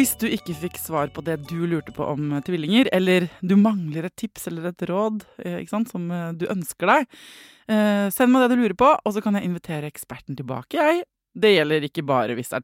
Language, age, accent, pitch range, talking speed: English, 20-39, Swedish, 155-220 Hz, 215 wpm